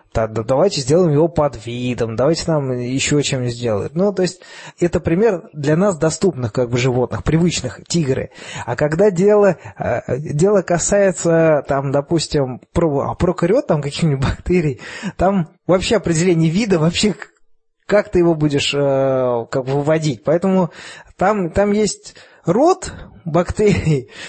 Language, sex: Russian, male